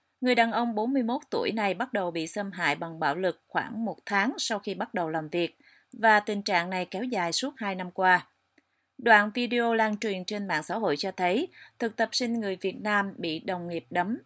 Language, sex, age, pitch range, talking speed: Vietnamese, female, 30-49, 175-225 Hz, 225 wpm